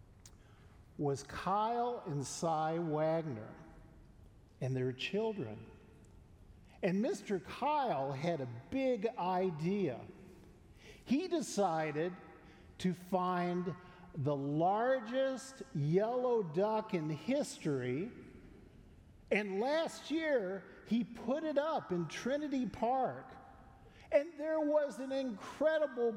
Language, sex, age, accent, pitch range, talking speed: English, male, 50-69, American, 125-205 Hz, 90 wpm